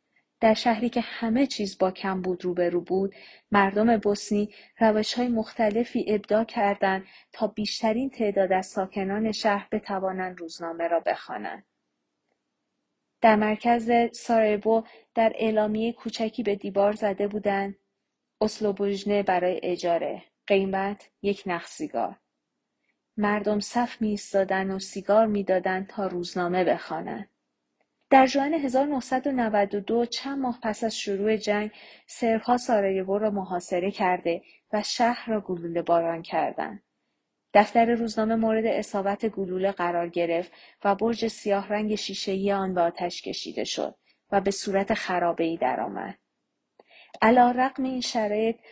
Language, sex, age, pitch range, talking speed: Persian, female, 30-49, 195-225 Hz, 120 wpm